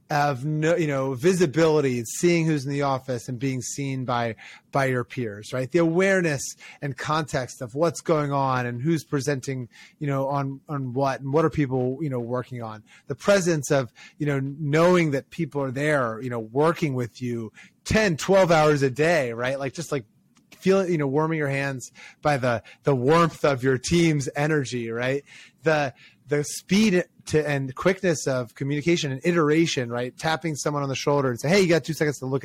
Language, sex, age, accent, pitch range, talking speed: English, male, 30-49, American, 130-160 Hz, 200 wpm